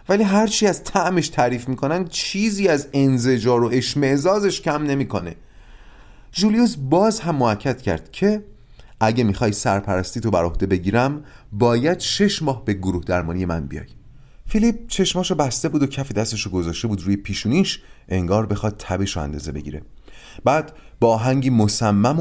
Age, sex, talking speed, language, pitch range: 30-49, male, 145 wpm, Persian, 95-140 Hz